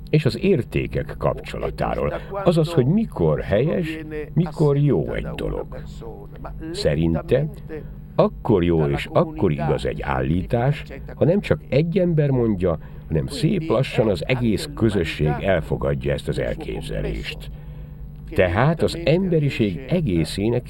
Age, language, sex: 60-79, Hungarian, male